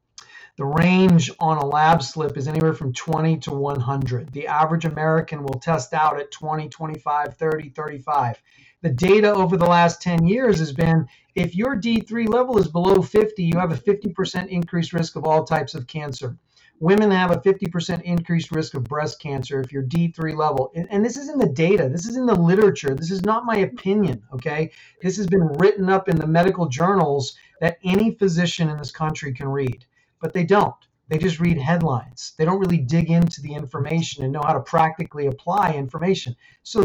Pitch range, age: 145-190 Hz, 40-59